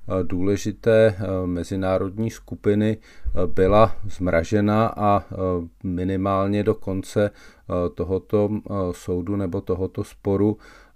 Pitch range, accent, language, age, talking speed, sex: 95-105 Hz, native, Czech, 40-59, 75 wpm, male